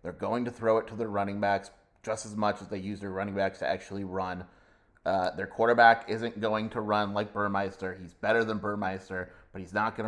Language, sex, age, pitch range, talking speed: English, male, 30-49, 95-110 Hz, 225 wpm